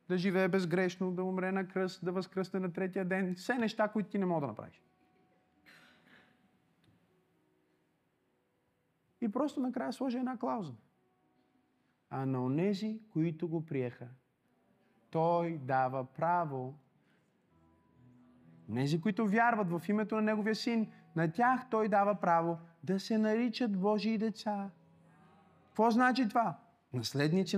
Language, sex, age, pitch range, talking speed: Bulgarian, male, 30-49, 130-205 Hz, 125 wpm